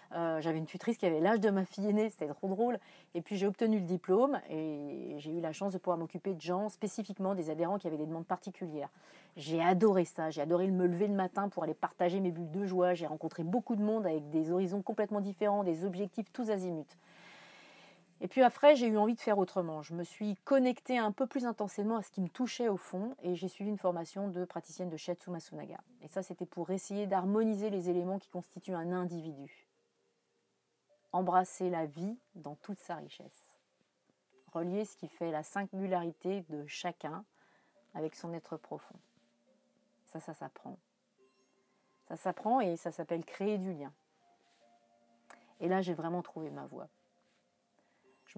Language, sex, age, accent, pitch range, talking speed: French, female, 30-49, French, 165-210 Hz, 190 wpm